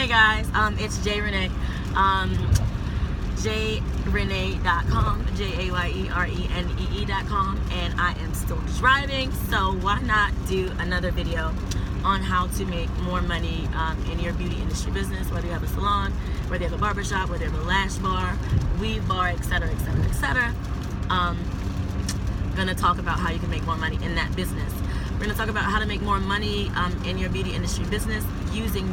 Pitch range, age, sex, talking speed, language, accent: 90-100 Hz, 20-39, female, 170 wpm, English, American